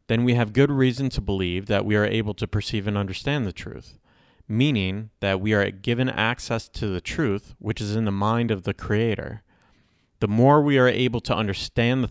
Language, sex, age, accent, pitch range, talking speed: English, male, 30-49, American, 100-115 Hz, 210 wpm